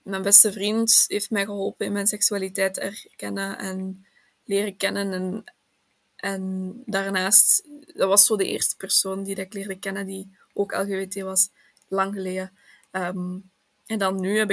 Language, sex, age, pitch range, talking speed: Dutch, female, 20-39, 190-210 Hz, 155 wpm